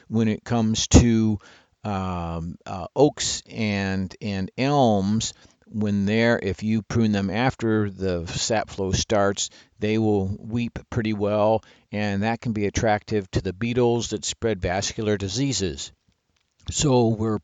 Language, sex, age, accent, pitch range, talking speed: English, male, 50-69, American, 90-110 Hz, 140 wpm